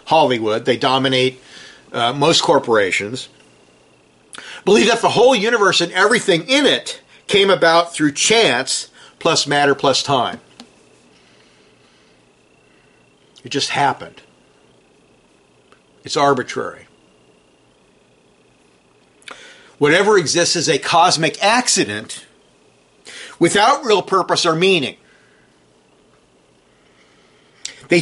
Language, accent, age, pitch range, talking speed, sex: English, American, 50-69, 145-210 Hz, 85 wpm, male